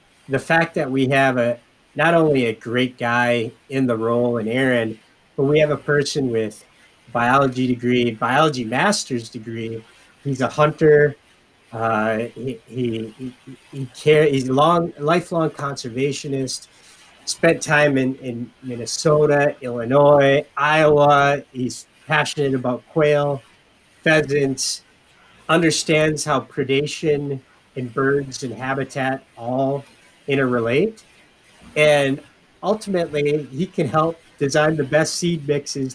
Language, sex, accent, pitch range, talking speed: English, male, American, 120-150 Hz, 120 wpm